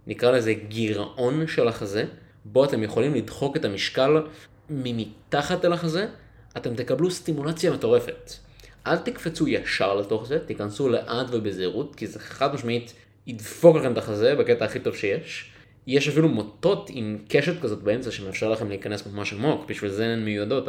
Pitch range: 100-145 Hz